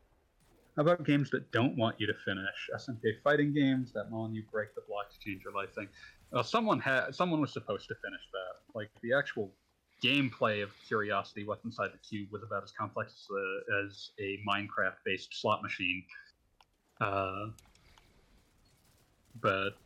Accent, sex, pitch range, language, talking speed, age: American, male, 100-120 Hz, English, 160 wpm, 30-49